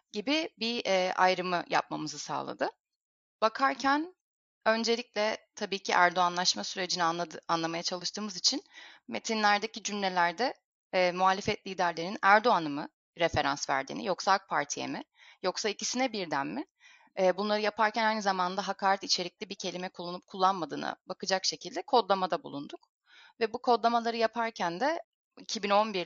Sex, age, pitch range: female, 10-29, 165-225 Hz